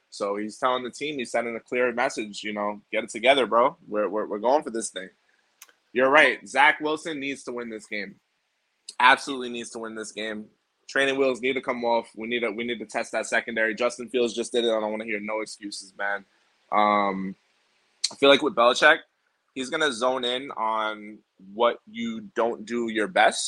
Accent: American